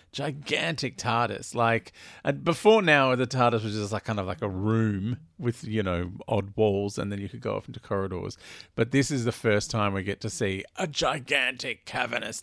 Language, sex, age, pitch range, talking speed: English, male, 40-59, 95-120 Hz, 200 wpm